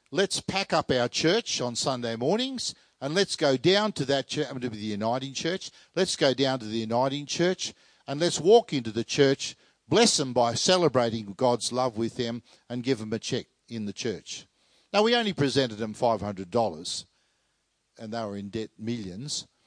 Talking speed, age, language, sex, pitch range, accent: 210 wpm, 50-69, English, male, 110-145 Hz, Australian